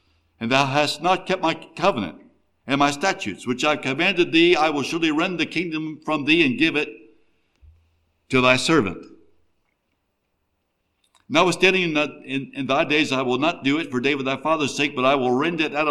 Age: 60-79